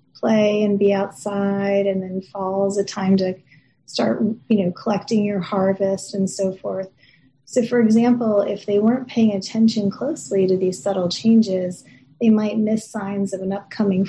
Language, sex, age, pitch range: English, female, 30-49, 190-215 Hz